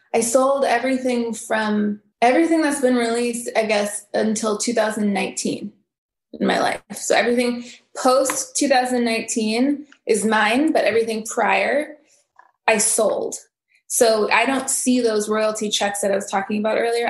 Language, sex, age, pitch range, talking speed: English, female, 20-39, 215-265 Hz, 135 wpm